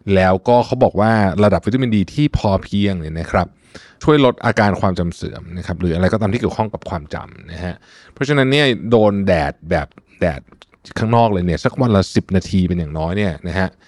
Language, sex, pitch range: Thai, male, 90-120 Hz